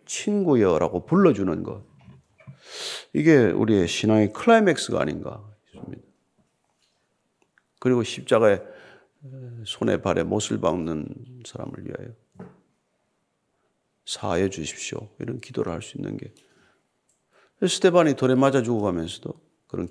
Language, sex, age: Korean, male, 40-59